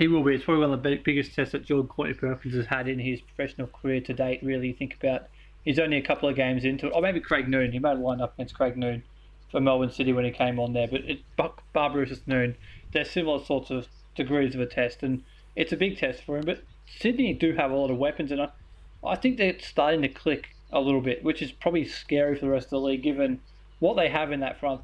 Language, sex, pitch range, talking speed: English, male, 130-150 Hz, 260 wpm